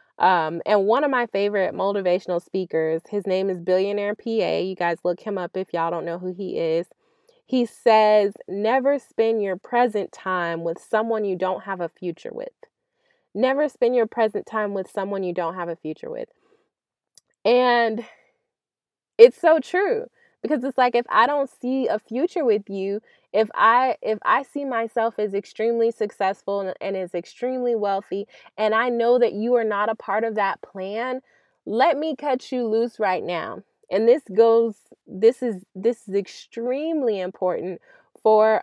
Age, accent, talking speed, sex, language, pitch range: 20-39, American, 170 wpm, female, English, 190-250 Hz